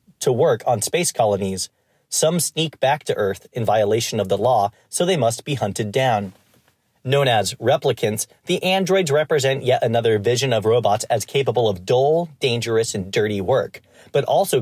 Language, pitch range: English, 110-145 Hz